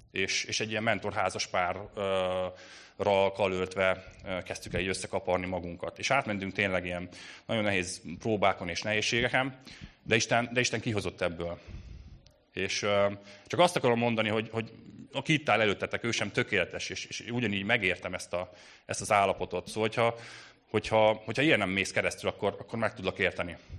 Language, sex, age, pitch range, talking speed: Hungarian, male, 30-49, 95-115 Hz, 170 wpm